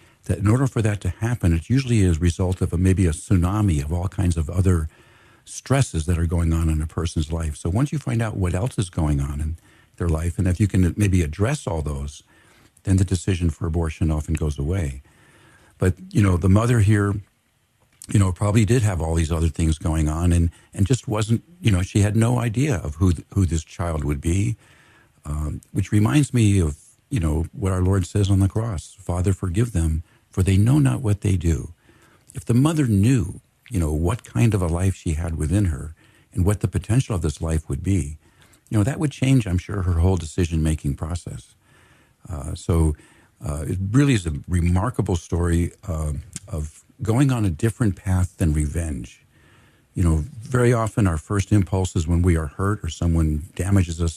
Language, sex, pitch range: English, male, 85-110 Hz